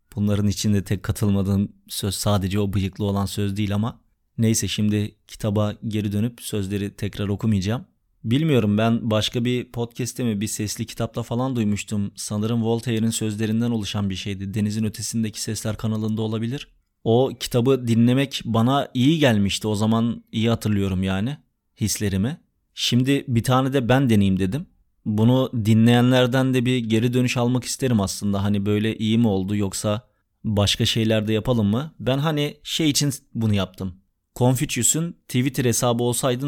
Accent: native